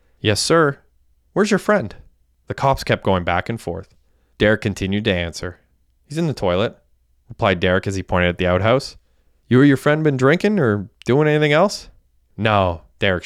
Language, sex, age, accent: English, male, 20-39, American